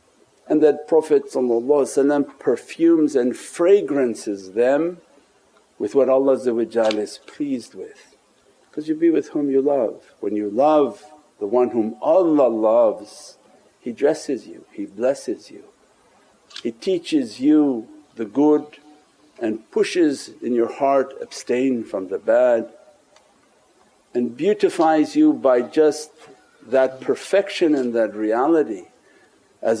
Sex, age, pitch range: male, 60-79, 125-200 Hz